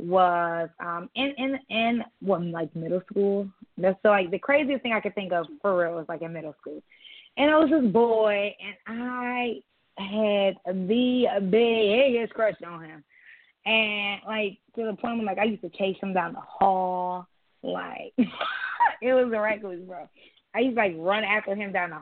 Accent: American